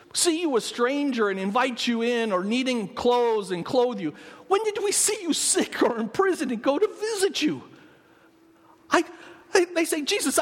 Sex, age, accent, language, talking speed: male, 50-69, American, English, 185 wpm